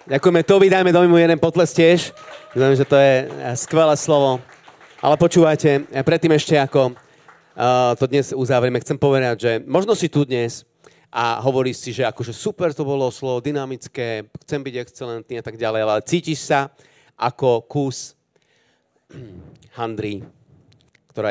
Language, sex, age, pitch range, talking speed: Slovak, male, 40-59, 115-150 Hz, 145 wpm